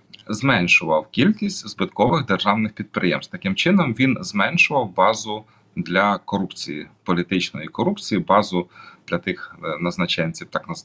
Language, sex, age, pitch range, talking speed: Ukrainian, male, 30-49, 90-130 Hz, 105 wpm